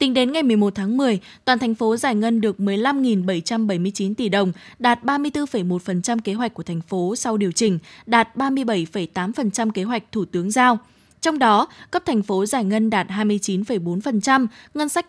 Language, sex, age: Vietnamese, female, 20-39